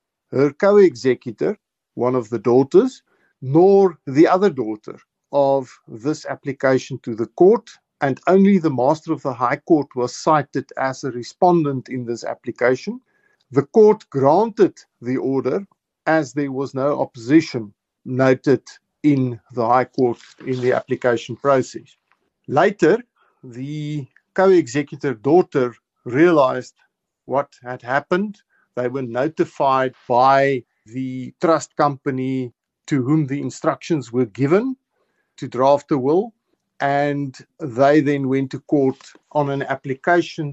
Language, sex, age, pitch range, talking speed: English, male, 50-69, 130-170 Hz, 125 wpm